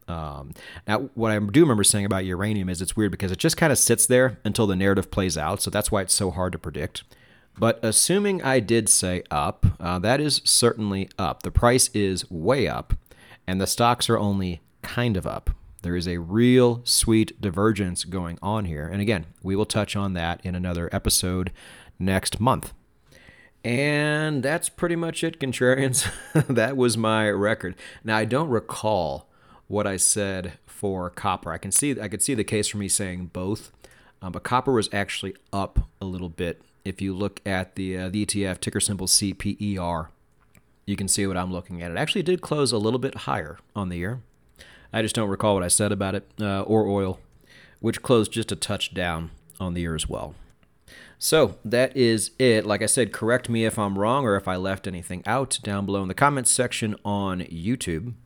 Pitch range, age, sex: 95-120 Hz, 30-49, male